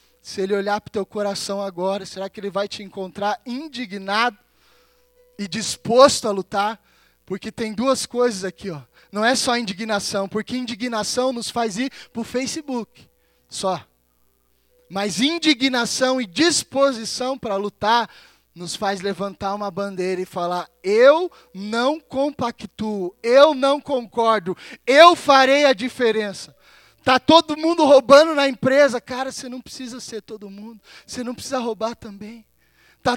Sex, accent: male, Brazilian